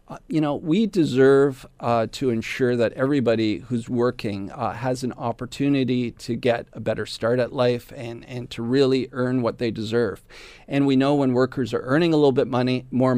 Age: 40-59